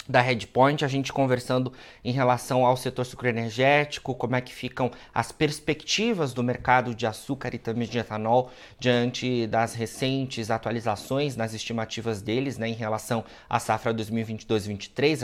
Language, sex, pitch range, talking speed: Portuguese, male, 115-130 Hz, 145 wpm